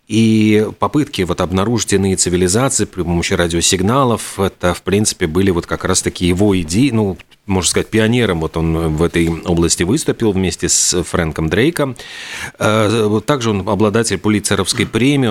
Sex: male